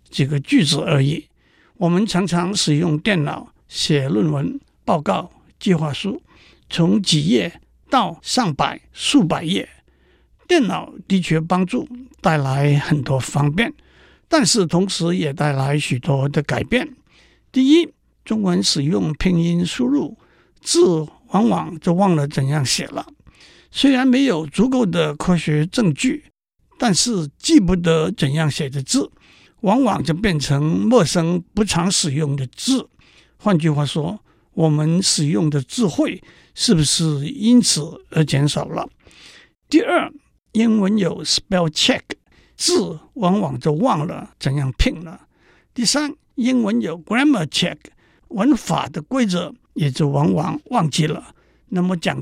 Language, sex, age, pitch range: Chinese, male, 60-79, 155-225 Hz